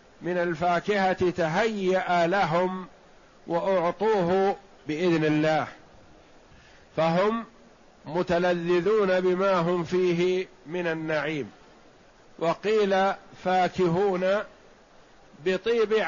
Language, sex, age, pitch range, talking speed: Arabic, male, 50-69, 165-195 Hz, 65 wpm